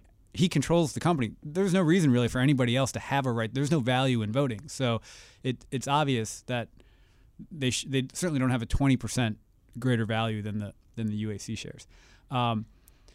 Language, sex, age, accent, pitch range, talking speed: English, male, 30-49, American, 115-140 Hz, 190 wpm